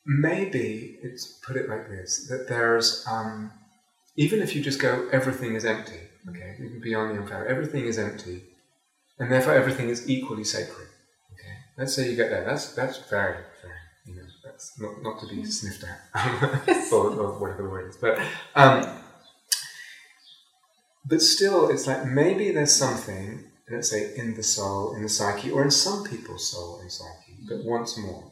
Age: 30-49